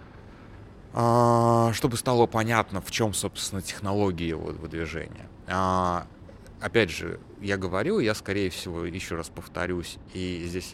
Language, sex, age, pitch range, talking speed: Russian, male, 20-39, 85-105 Hz, 115 wpm